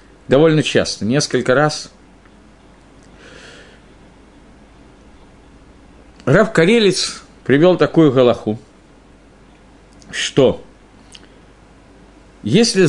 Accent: native